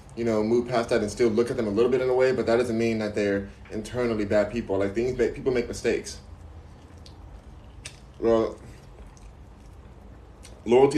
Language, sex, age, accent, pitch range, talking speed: English, male, 20-39, American, 105-125 Hz, 180 wpm